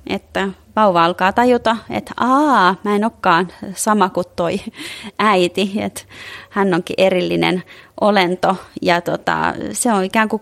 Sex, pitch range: female, 170-215 Hz